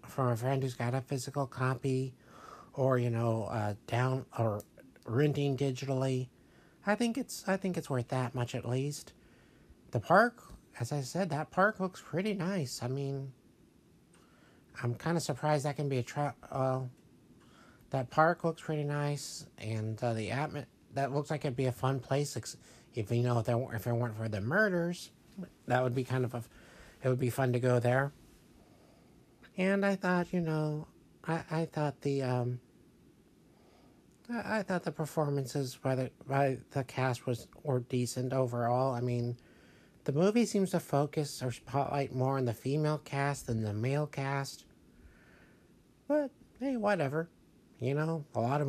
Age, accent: 50-69, American